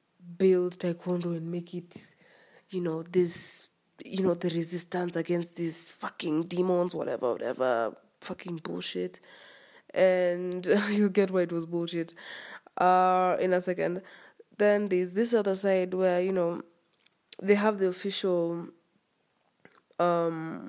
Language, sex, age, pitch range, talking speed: English, female, 20-39, 175-200 Hz, 130 wpm